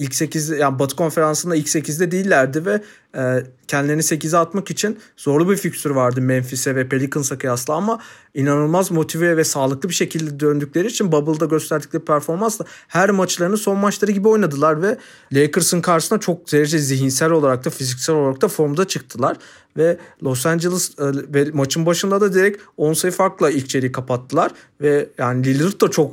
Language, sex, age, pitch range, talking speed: Turkish, male, 40-59, 140-180 Hz, 165 wpm